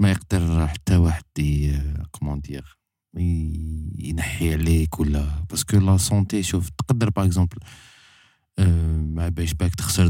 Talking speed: 115 wpm